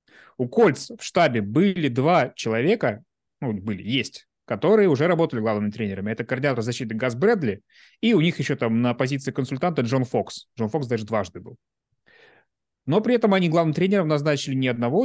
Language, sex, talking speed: Russian, male, 175 wpm